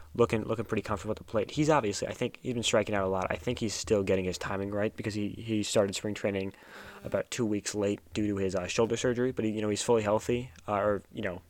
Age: 10-29